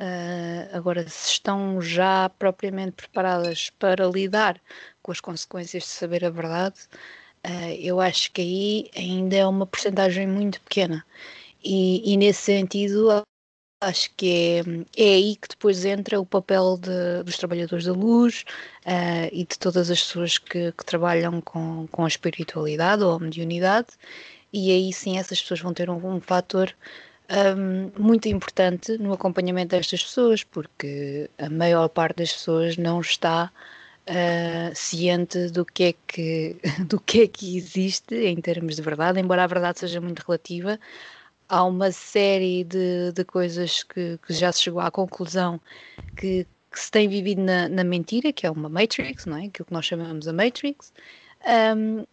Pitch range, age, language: 175-200 Hz, 20-39, Portuguese